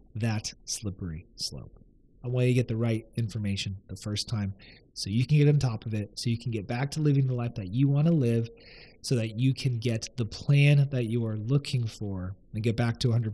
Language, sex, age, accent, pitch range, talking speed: English, male, 30-49, American, 110-140 Hz, 240 wpm